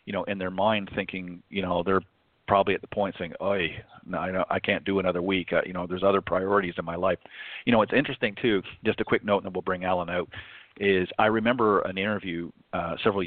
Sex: male